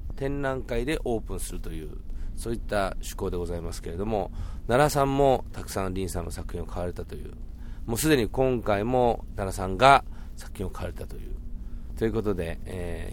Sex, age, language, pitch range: male, 40-59, Japanese, 85-105 Hz